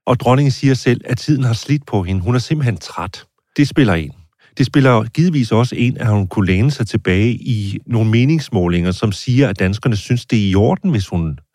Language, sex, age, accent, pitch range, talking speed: Danish, male, 40-59, native, 95-130 Hz, 220 wpm